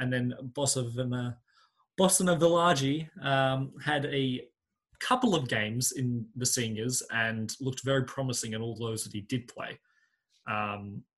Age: 20-39